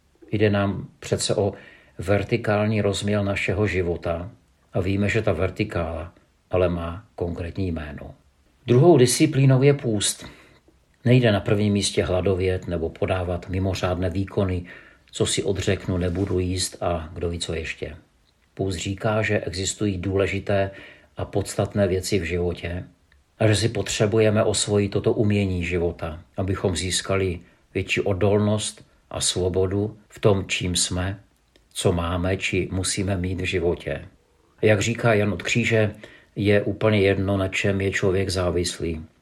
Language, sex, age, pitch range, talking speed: Czech, male, 50-69, 90-100 Hz, 135 wpm